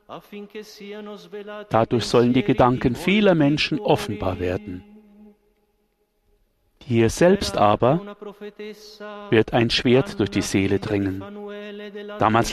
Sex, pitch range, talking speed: male, 125-205 Hz, 90 wpm